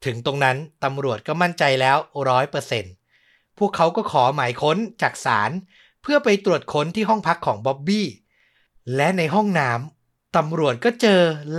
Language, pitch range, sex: Thai, 125-180 Hz, male